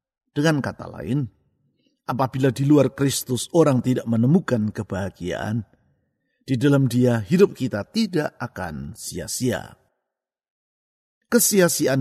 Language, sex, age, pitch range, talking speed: Indonesian, male, 50-69, 120-165 Hz, 100 wpm